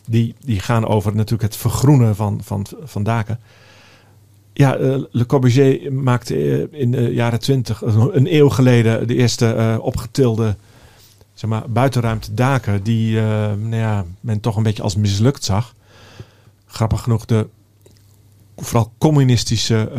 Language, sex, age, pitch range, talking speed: Dutch, male, 50-69, 105-120 Hz, 125 wpm